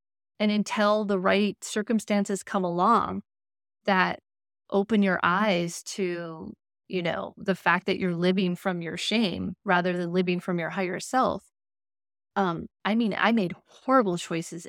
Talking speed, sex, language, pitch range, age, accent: 145 wpm, female, English, 180-215 Hz, 30-49, American